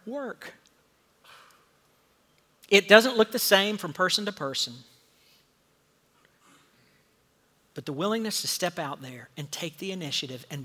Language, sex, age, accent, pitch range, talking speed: English, male, 50-69, American, 160-215 Hz, 125 wpm